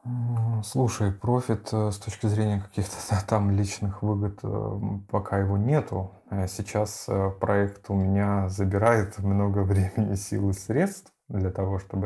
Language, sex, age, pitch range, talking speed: Russian, male, 20-39, 95-105 Hz, 125 wpm